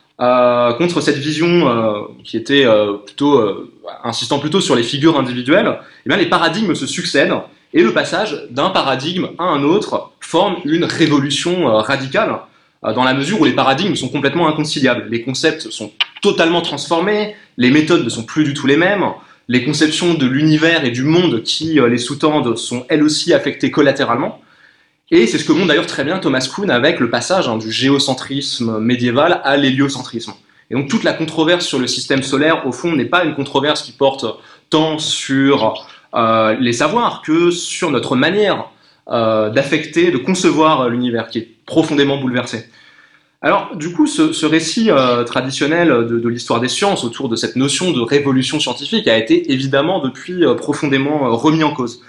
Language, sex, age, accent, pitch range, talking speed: French, male, 20-39, French, 125-160 Hz, 185 wpm